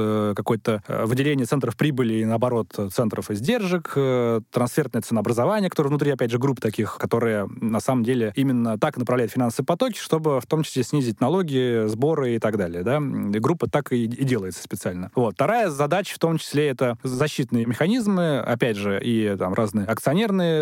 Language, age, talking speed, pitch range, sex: Russian, 20-39, 170 wpm, 115-155 Hz, male